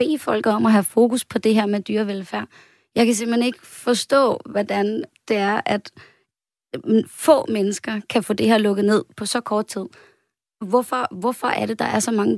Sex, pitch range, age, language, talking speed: female, 200-240 Hz, 20-39, Danish, 195 wpm